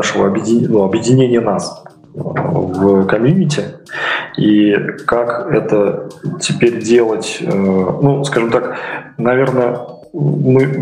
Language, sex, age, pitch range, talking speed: Russian, male, 20-39, 105-130 Hz, 95 wpm